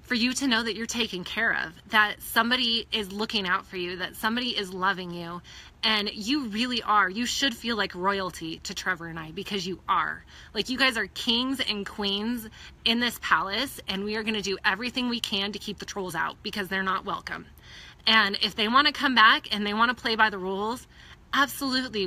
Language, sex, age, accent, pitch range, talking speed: English, female, 20-39, American, 200-245 Hz, 210 wpm